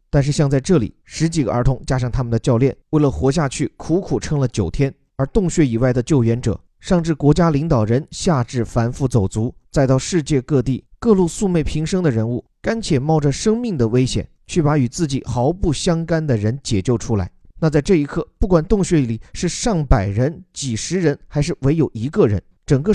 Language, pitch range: Chinese, 120-170 Hz